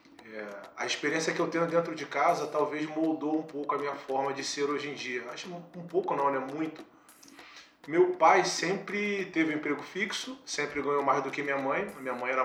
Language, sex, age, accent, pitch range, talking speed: Portuguese, male, 20-39, Brazilian, 145-180 Hz, 225 wpm